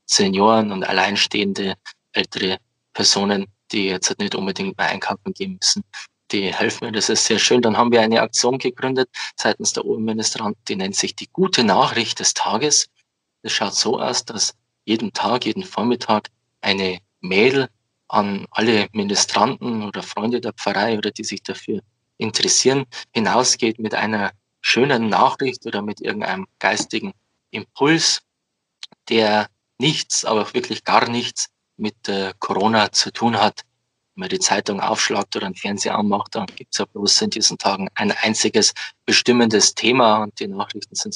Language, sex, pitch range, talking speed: German, male, 100-125 Hz, 155 wpm